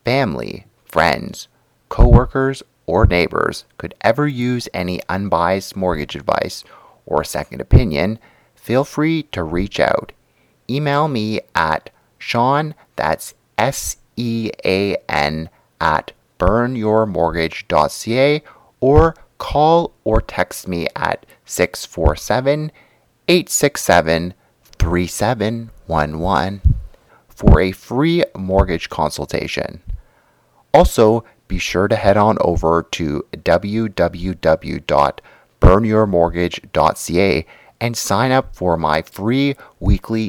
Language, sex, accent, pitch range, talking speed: English, male, American, 85-130 Hz, 85 wpm